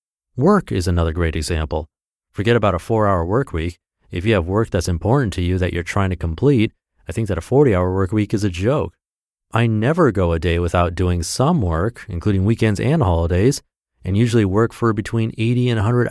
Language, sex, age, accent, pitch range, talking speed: English, male, 30-49, American, 90-115 Hz, 205 wpm